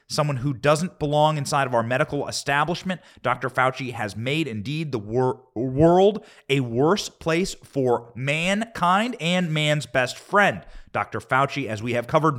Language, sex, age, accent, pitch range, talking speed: English, male, 30-49, American, 125-175 Hz, 150 wpm